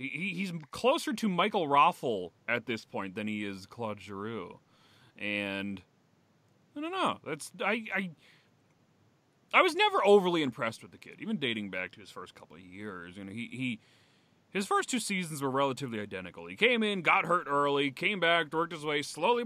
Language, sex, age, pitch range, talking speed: English, male, 30-49, 125-205 Hz, 190 wpm